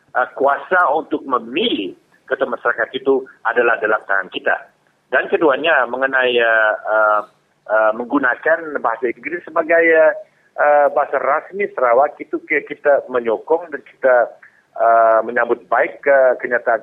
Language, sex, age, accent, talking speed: English, male, 50-69, Indonesian, 120 wpm